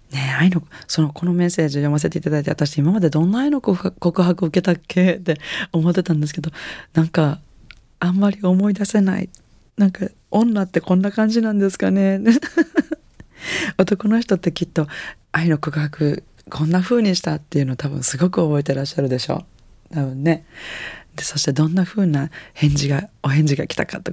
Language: Japanese